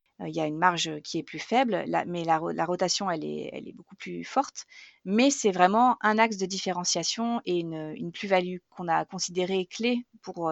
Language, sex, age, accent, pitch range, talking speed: French, female, 30-49, French, 180-230 Hz, 205 wpm